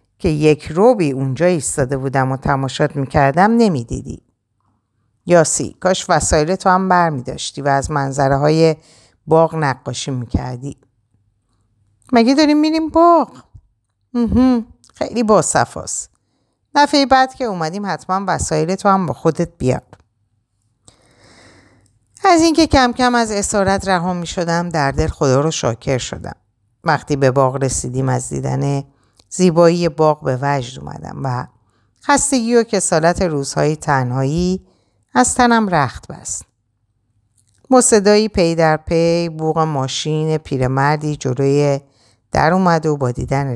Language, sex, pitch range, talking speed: Persian, female, 125-185 Hz, 125 wpm